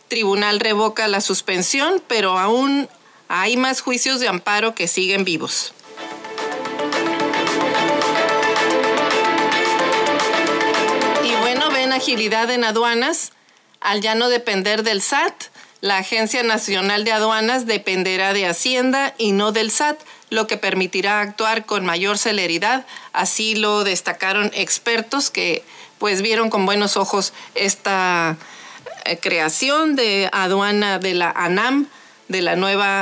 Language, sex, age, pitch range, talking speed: Spanish, female, 40-59, 185-235 Hz, 120 wpm